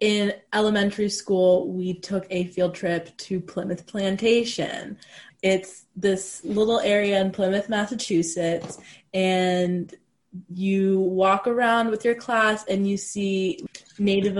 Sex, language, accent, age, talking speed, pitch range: female, English, American, 20-39, 120 wpm, 175-200 Hz